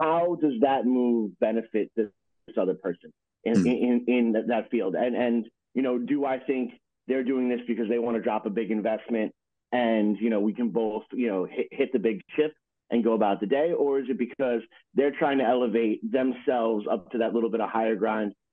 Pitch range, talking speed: 105-125 Hz, 215 wpm